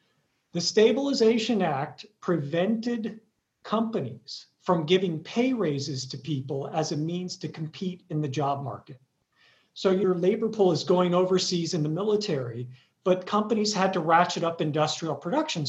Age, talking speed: 50-69, 145 wpm